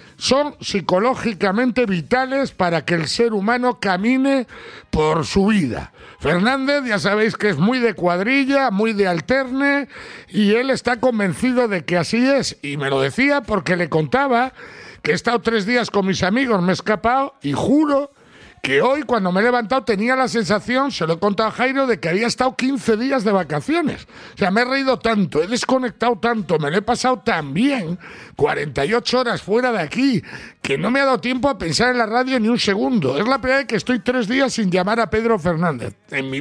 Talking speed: 200 wpm